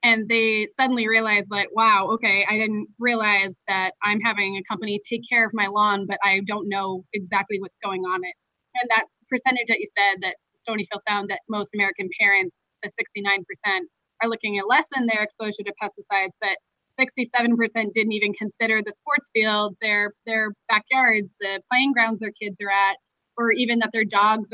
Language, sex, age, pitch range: English, female, 20-39, 200-225 Hz